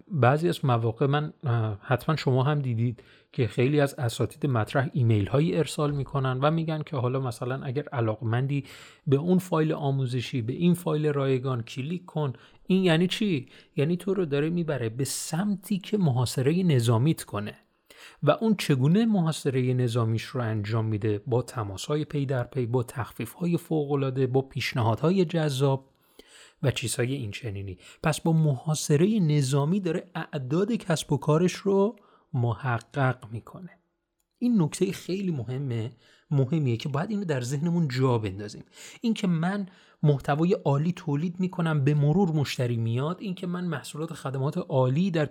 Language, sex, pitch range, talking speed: Persian, male, 125-165 Hz, 150 wpm